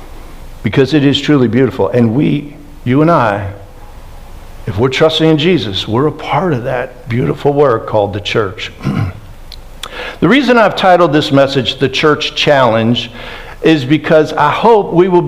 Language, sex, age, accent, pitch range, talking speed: English, male, 60-79, American, 145-210 Hz, 155 wpm